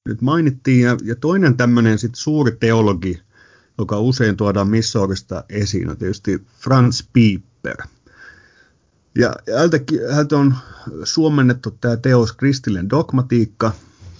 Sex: male